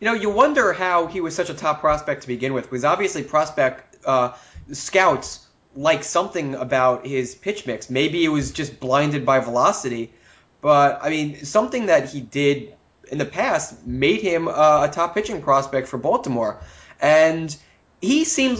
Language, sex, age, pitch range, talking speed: English, male, 20-39, 140-190 Hz, 175 wpm